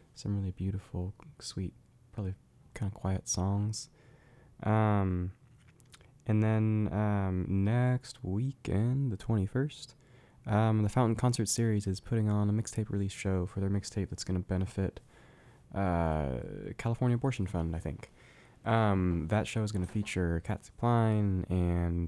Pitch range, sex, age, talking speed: 95-115 Hz, male, 20-39, 140 wpm